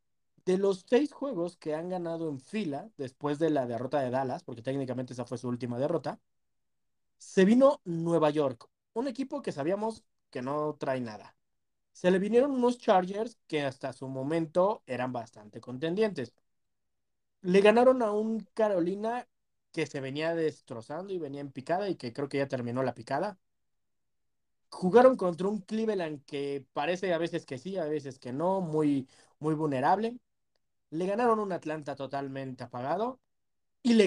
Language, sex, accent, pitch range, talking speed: Spanish, male, Mexican, 135-195 Hz, 160 wpm